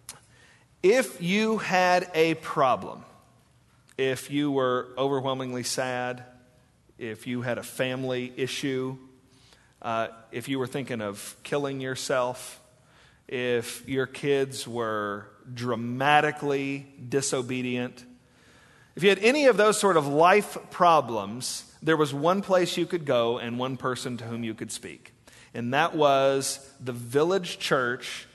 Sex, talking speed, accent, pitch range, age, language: male, 130 wpm, American, 130-190 Hz, 40-59, English